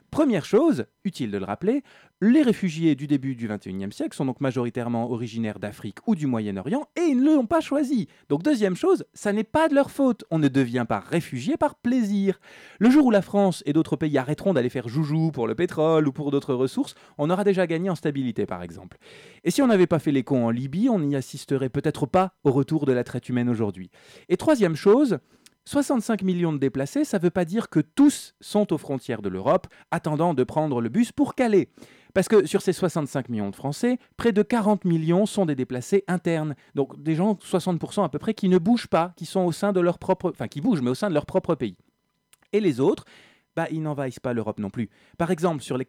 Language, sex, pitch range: French, male, 135-205 Hz